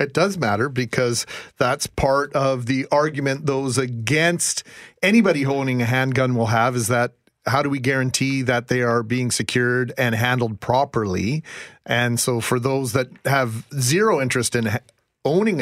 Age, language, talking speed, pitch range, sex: 40-59, English, 160 wpm, 120-145 Hz, male